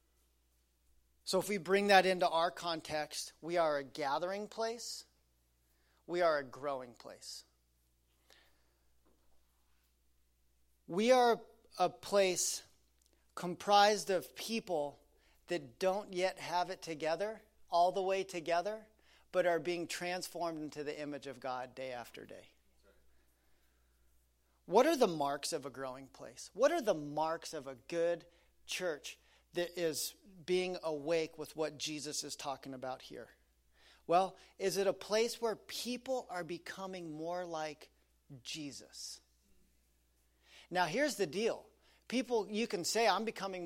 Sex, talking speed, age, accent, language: male, 130 wpm, 40-59, American, English